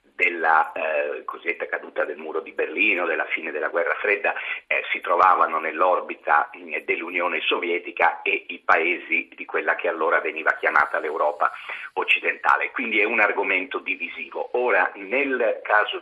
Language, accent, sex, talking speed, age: Italian, native, male, 140 wpm, 40-59